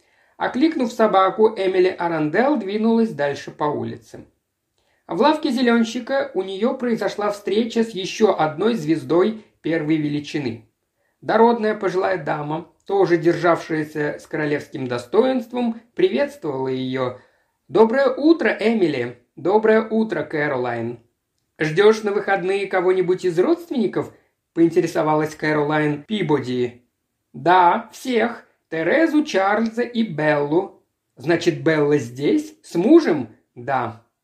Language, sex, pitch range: Russian, male, 155-220 Hz